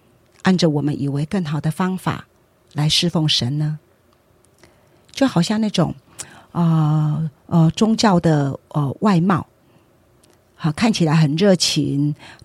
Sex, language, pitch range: female, Chinese, 145-180 Hz